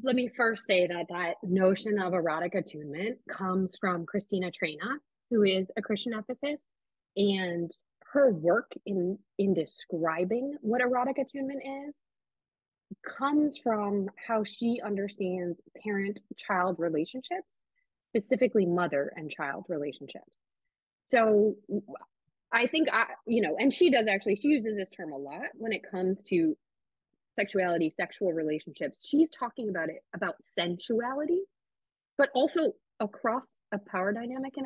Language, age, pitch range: English, 20-39, 175-250 Hz